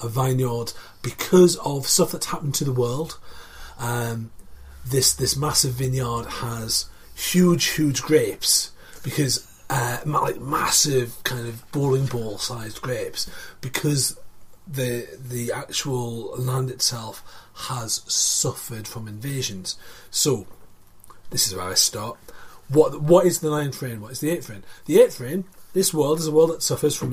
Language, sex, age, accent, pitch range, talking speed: English, male, 40-59, British, 120-150 Hz, 145 wpm